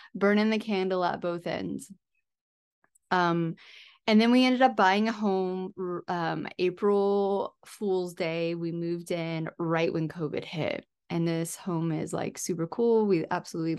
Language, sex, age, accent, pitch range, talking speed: English, female, 20-39, American, 165-195 Hz, 150 wpm